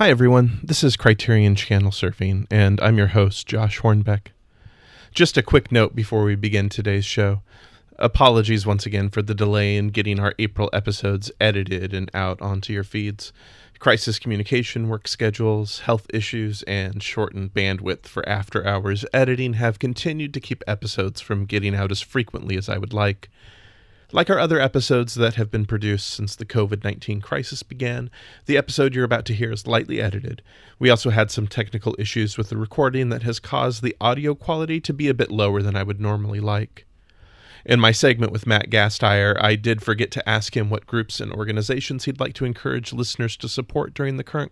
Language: English